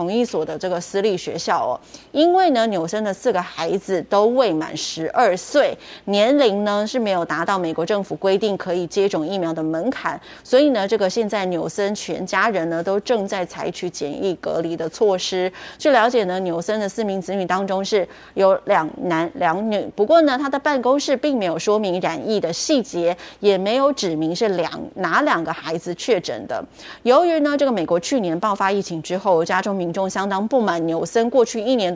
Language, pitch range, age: Chinese, 180-230 Hz, 20-39